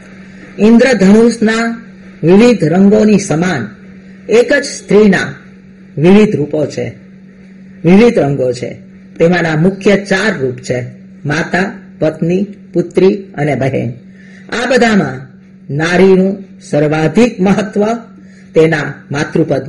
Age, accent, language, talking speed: 40-59, native, Gujarati, 45 wpm